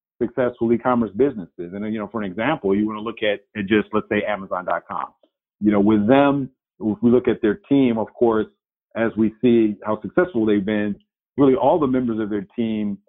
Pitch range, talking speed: 100-120 Hz, 200 wpm